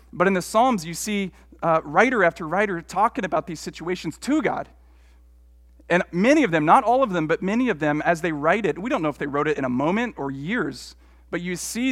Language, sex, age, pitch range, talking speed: English, male, 40-59, 140-190 Hz, 235 wpm